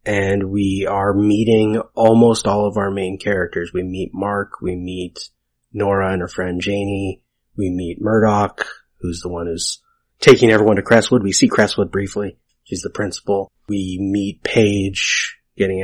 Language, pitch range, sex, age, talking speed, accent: English, 95-105 Hz, male, 30-49, 160 wpm, American